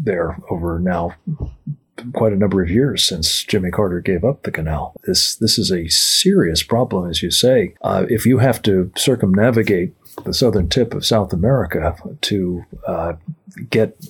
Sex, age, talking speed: male, 50-69, 165 wpm